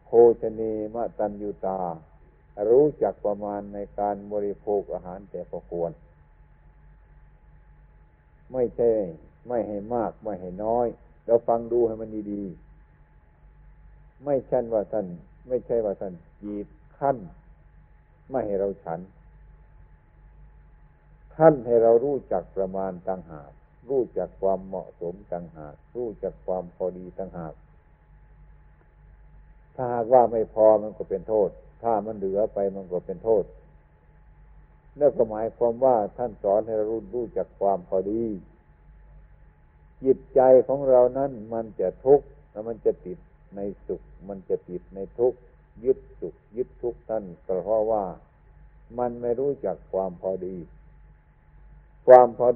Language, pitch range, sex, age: Thai, 90-115 Hz, male, 60-79